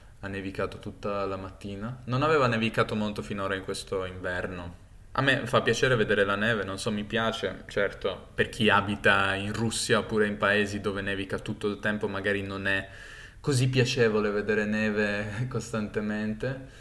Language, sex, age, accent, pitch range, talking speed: Italian, male, 10-29, native, 95-110 Hz, 165 wpm